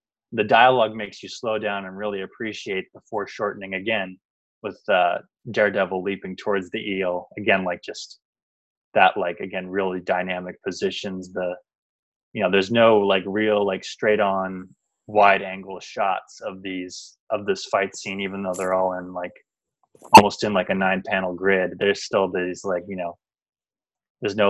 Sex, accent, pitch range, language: male, American, 95-105 Hz, English